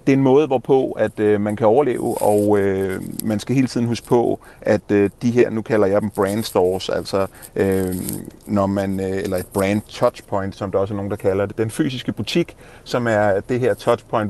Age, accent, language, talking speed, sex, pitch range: 30-49, native, Danish, 220 wpm, male, 100-125 Hz